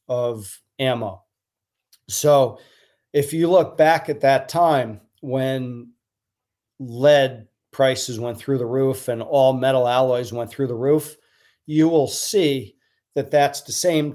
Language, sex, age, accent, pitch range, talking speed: English, male, 40-59, American, 115-135 Hz, 135 wpm